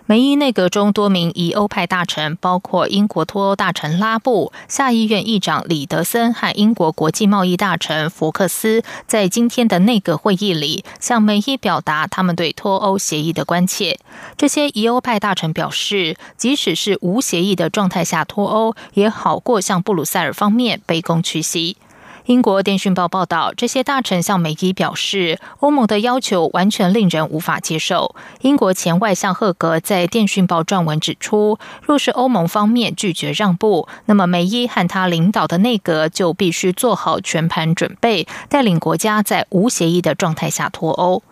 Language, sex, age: German, female, 20-39